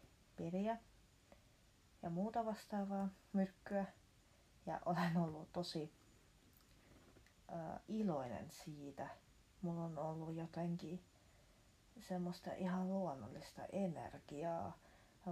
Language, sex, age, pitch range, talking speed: Finnish, female, 30-49, 135-185 Hz, 80 wpm